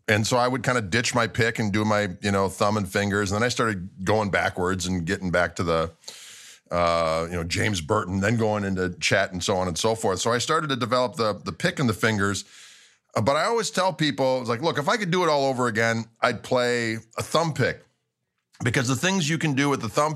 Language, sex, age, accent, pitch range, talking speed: English, male, 40-59, American, 105-140 Hz, 255 wpm